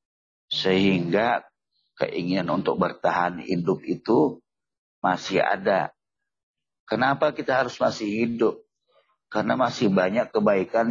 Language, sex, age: Indonesian, male, 50-69